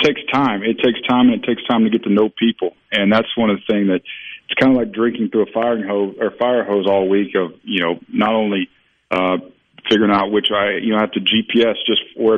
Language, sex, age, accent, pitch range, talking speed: English, male, 40-59, American, 95-105 Hz, 255 wpm